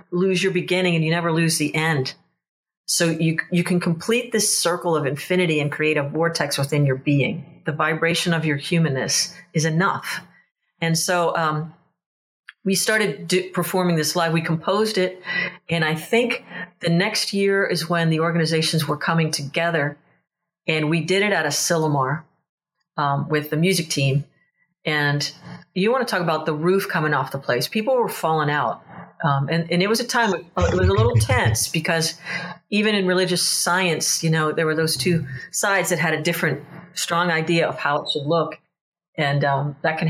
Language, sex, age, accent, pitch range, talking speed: English, female, 40-59, American, 155-180 Hz, 185 wpm